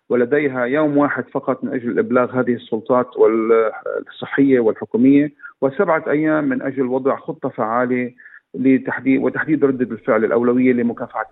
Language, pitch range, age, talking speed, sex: Arabic, 120-140 Hz, 40-59, 125 wpm, male